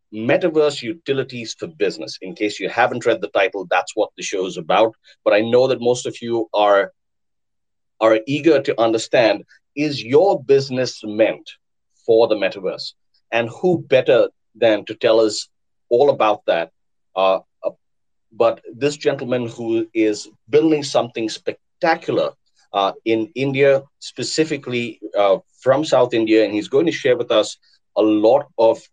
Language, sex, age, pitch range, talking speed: English, male, 30-49, 110-150 Hz, 155 wpm